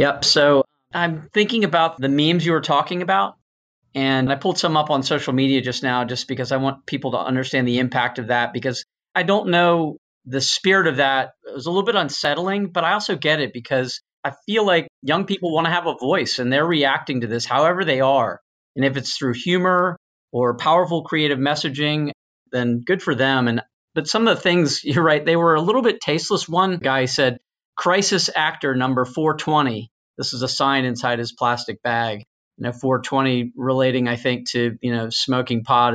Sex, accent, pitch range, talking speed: male, American, 125-155 Hz, 205 wpm